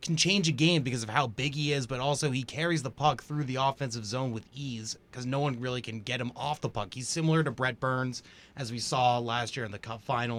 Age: 30-49